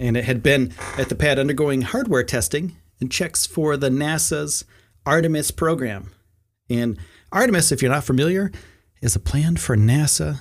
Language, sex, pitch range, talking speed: English, male, 95-145 Hz, 160 wpm